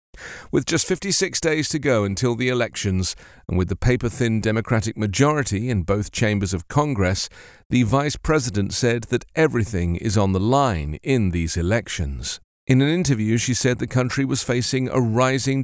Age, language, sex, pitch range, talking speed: 50-69, English, male, 95-135 Hz, 170 wpm